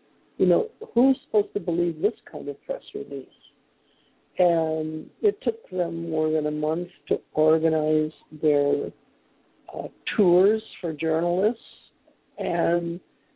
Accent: American